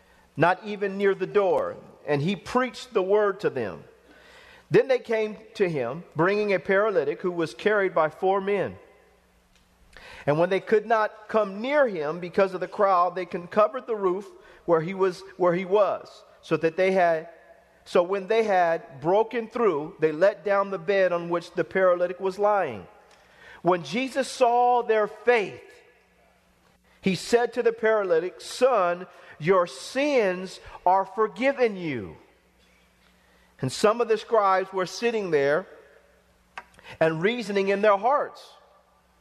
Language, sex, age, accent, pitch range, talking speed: English, male, 40-59, American, 180-240 Hz, 150 wpm